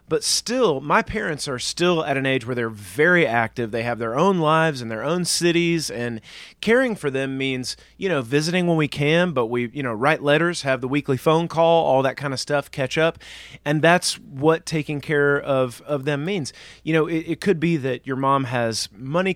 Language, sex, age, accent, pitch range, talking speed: English, male, 30-49, American, 130-165 Hz, 220 wpm